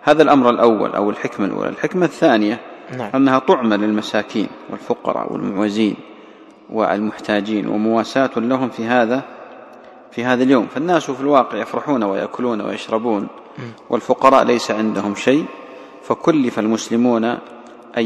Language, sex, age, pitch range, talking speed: English, male, 40-59, 105-120 Hz, 115 wpm